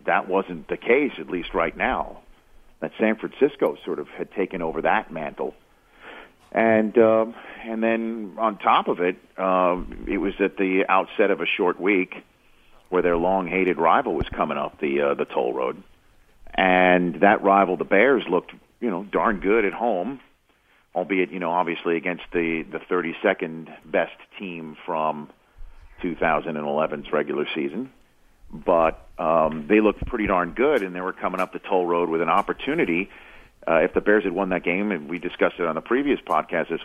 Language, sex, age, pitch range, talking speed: English, male, 50-69, 85-100 Hz, 175 wpm